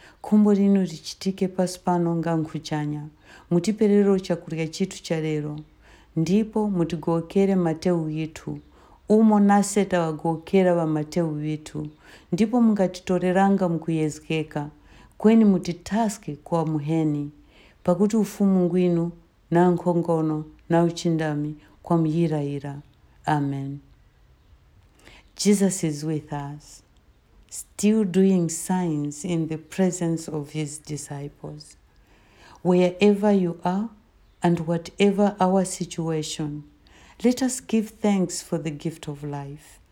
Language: English